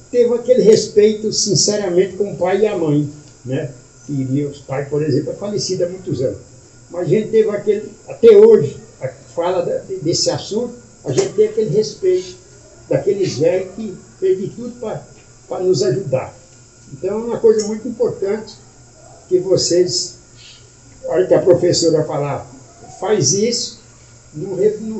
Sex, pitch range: male, 140-230 Hz